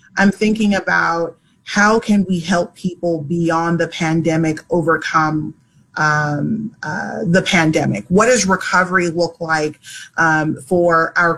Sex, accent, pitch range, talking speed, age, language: female, American, 165-185 Hz, 125 wpm, 30-49, English